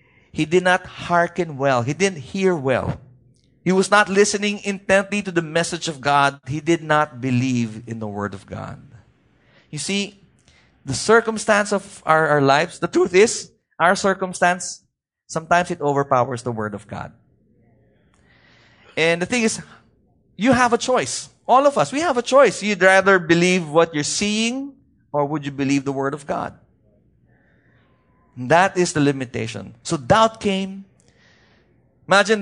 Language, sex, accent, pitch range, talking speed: English, male, Filipino, 140-205 Hz, 155 wpm